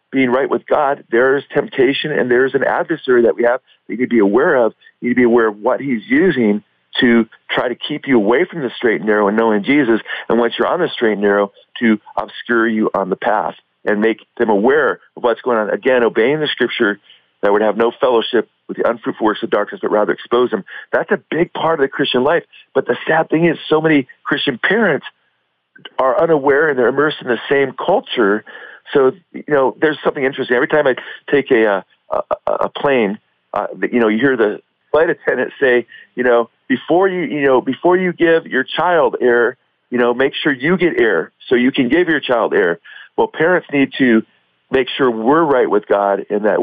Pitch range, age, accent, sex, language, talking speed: 115-160 Hz, 40-59, American, male, English, 220 wpm